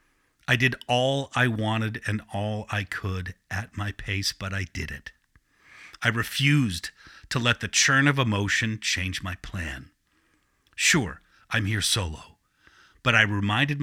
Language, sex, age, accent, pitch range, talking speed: English, male, 50-69, American, 100-130 Hz, 150 wpm